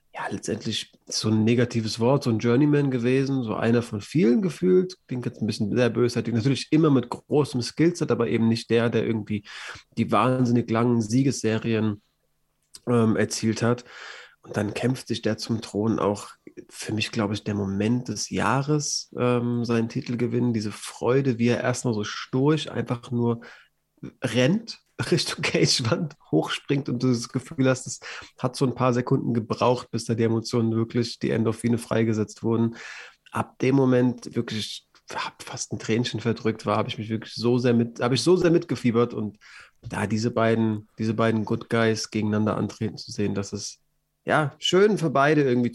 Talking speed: 175 wpm